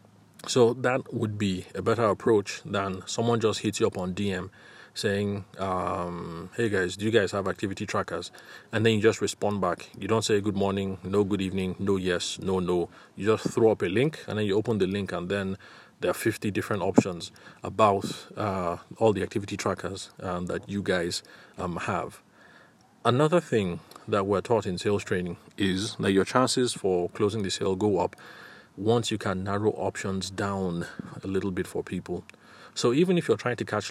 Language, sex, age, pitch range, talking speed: English, male, 30-49, 95-110 Hz, 195 wpm